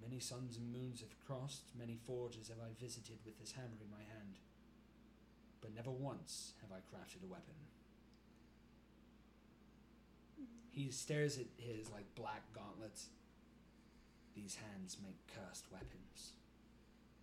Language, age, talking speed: English, 30-49, 130 wpm